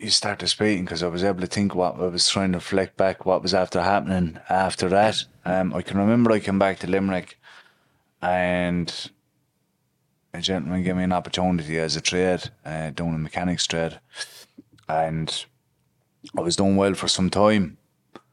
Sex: male